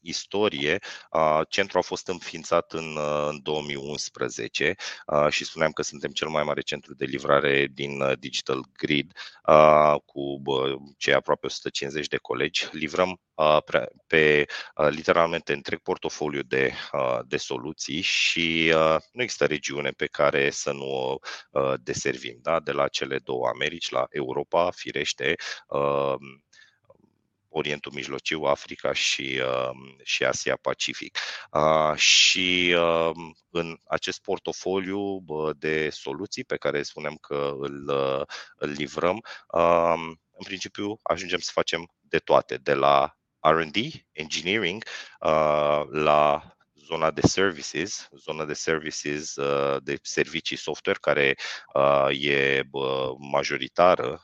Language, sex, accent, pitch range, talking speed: Romanian, male, native, 70-80 Hz, 130 wpm